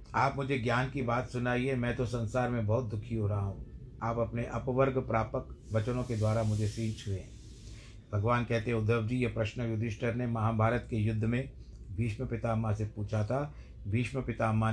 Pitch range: 110-130 Hz